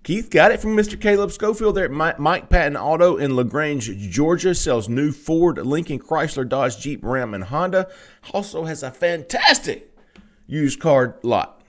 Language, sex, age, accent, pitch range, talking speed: English, male, 40-59, American, 125-175 Hz, 165 wpm